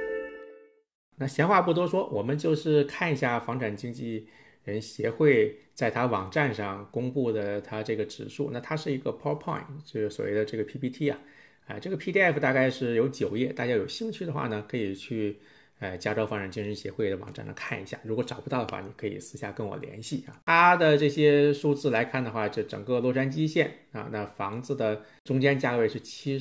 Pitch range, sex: 110-145 Hz, male